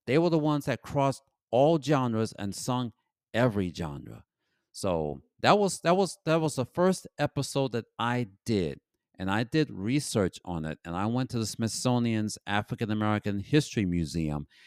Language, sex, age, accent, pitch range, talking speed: English, male, 50-69, American, 90-120 Hz, 170 wpm